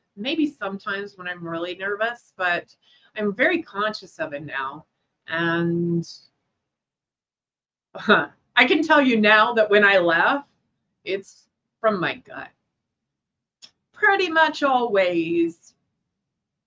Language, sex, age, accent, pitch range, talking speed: English, female, 30-49, American, 180-250 Hz, 110 wpm